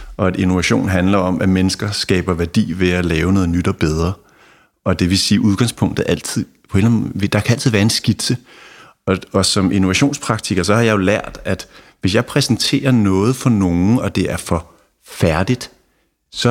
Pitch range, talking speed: 90-115 Hz, 185 wpm